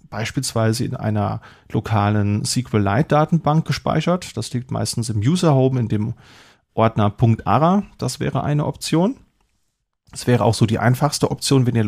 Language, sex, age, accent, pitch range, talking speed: German, male, 30-49, German, 110-130 Hz, 140 wpm